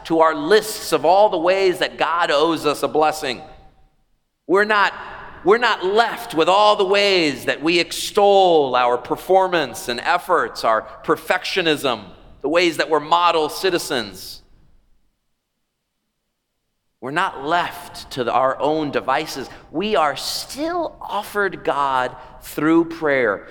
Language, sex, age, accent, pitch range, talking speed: English, male, 40-59, American, 155-205 Hz, 130 wpm